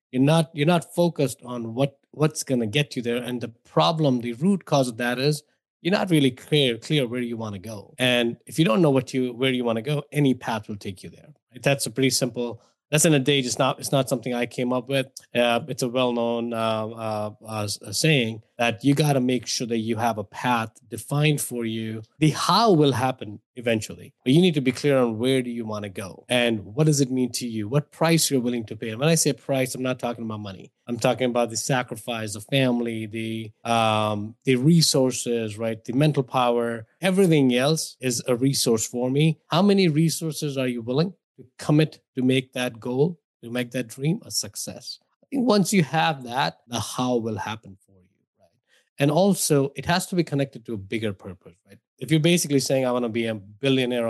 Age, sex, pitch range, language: 20-39, male, 115-150 Hz, English